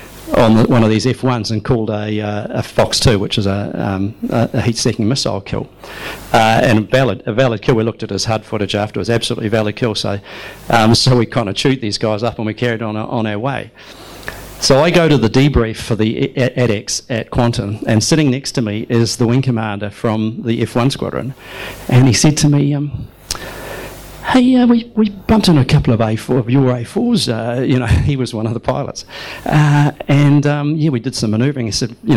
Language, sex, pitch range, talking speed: English, male, 110-130 Hz, 220 wpm